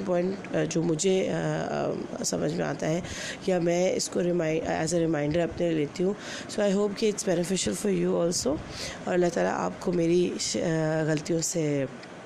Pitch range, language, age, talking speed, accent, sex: 160-180 Hz, English, 30-49, 125 wpm, Indian, female